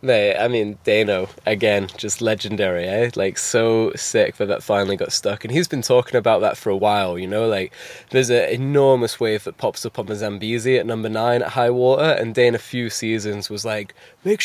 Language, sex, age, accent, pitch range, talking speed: English, male, 10-29, British, 105-125 Hz, 215 wpm